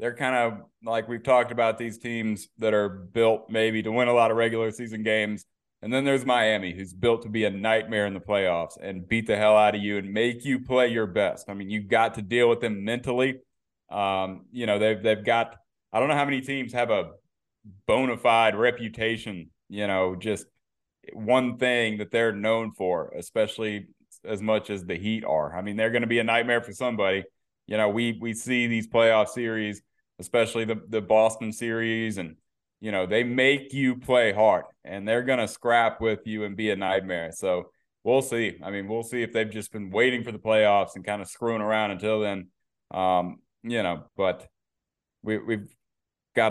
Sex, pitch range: male, 100-115 Hz